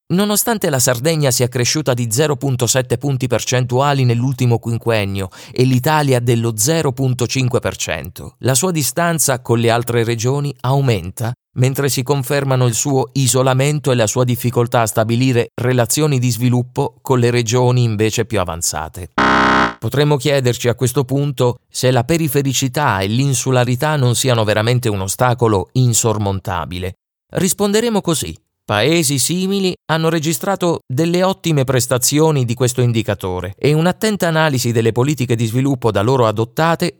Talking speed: 135 wpm